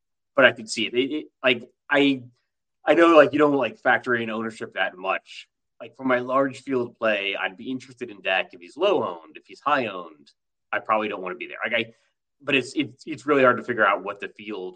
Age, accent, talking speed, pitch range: 30-49, American, 245 wpm, 110-140 Hz